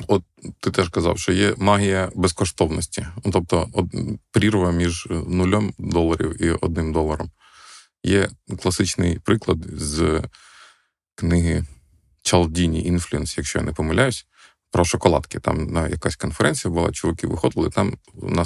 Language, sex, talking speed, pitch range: Ukrainian, male, 120 wpm, 80-100 Hz